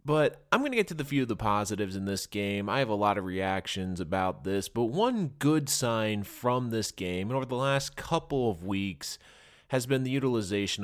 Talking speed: 220 wpm